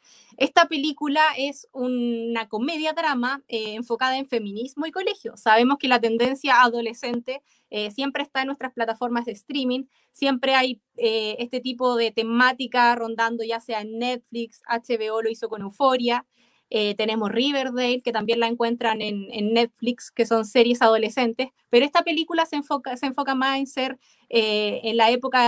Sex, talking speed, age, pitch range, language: female, 160 wpm, 20-39, 225-260 Hz, Spanish